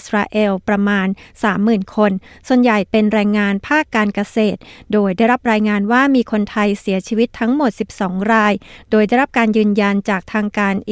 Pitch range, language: 200-230 Hz, Thai